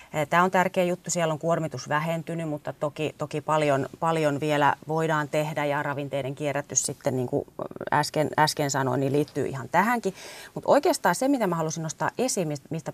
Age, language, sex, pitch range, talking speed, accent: 30-49, Finnish, female, 140-175 Hz, 175 wpm, native